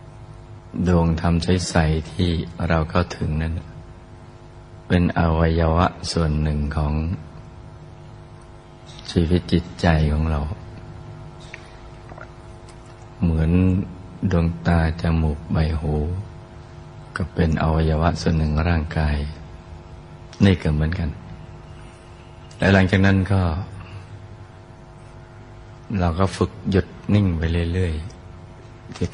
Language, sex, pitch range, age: Thai, male, 85-110 Hz, 60-79